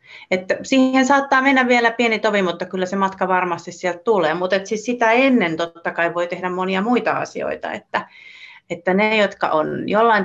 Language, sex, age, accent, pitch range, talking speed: Finnish, female, 30-49, native, 165-215 Hz, 180 wpm